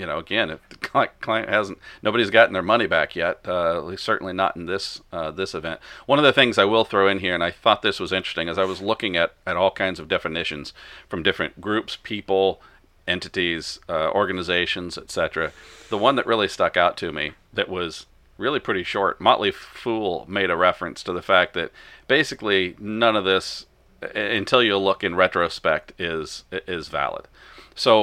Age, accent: 40-59, American